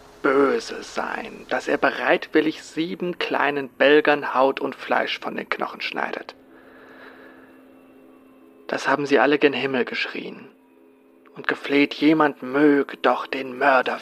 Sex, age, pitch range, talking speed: male, 40-59, 110-150 Hz, 125 wpm